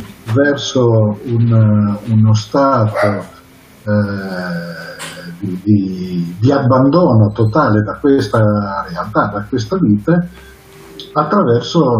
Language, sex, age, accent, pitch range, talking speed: Italian, male, 50-69, native, 105-130 Hz, 85 wpm